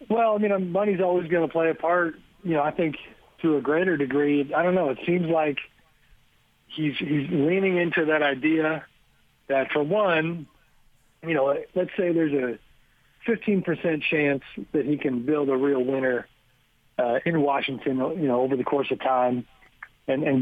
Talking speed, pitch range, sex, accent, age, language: 175 wpm, 135-160 Hz, male, American, 40-59, English